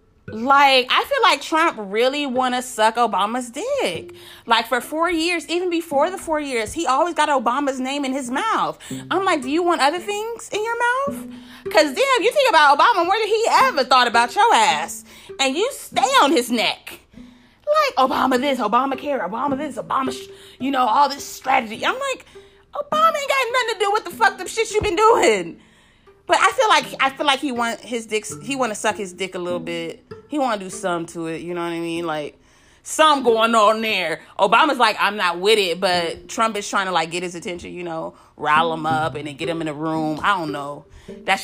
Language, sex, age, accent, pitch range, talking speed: English, female, 30-49, American, 215-320 Hz, 225 wpm